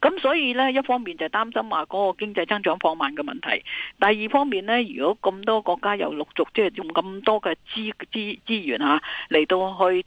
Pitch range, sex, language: 175-250 Hz, female, Chinese